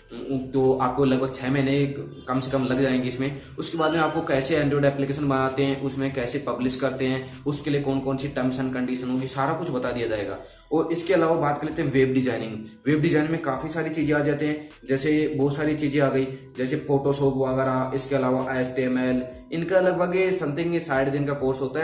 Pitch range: 115-140 Hz